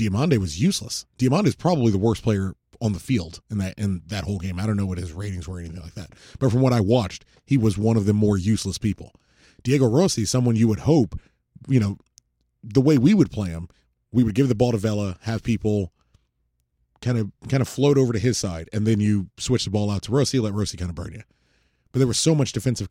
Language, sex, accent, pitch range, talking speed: English, male, American, 95-130 Hz, 250 wpm